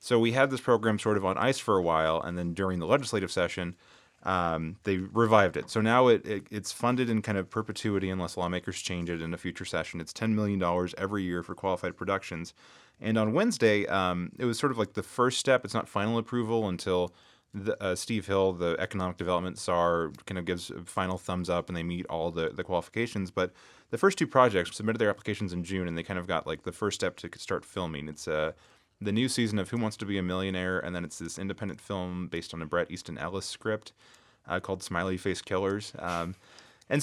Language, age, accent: English, 30-49, American